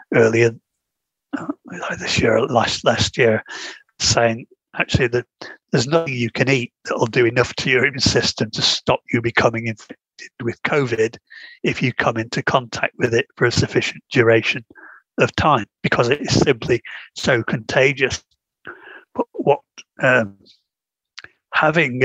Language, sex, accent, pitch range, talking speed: English, male, British, 115-140 Hz, 145 wpm